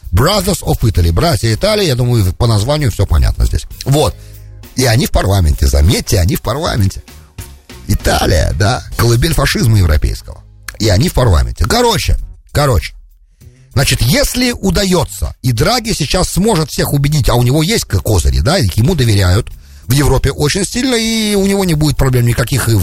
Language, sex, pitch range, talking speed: English, male, 95-145 Hz, 160 wpm